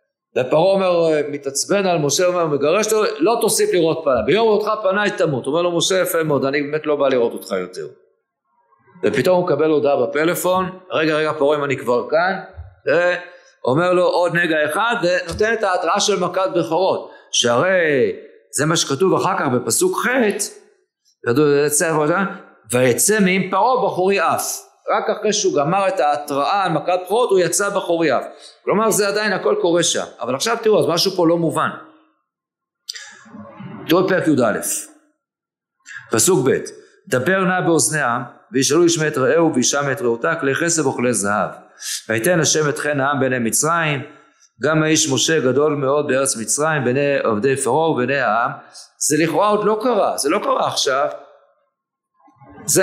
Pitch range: 150-205 Hz